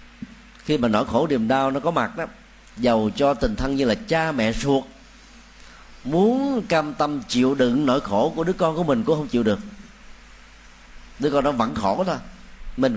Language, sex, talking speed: Vietnamese, male, 195 wpm